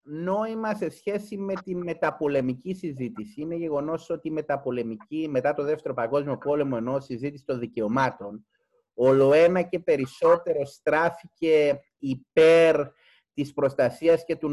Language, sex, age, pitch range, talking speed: Greek, male, 30-49, 150-205 Hz, 125 wpm